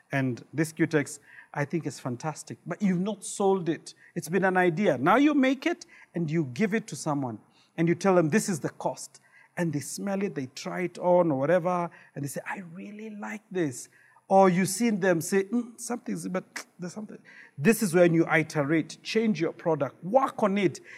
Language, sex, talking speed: English, male, 205 wpm